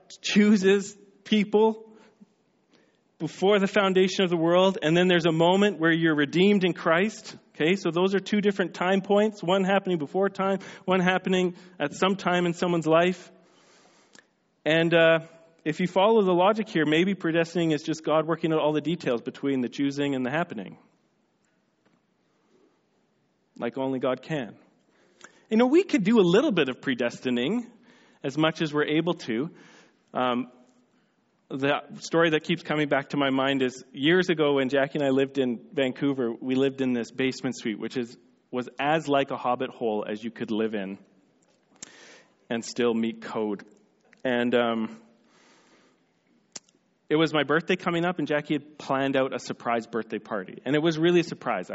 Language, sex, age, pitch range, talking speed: English, male, 40-59, 130-185 Hz, 170 wpm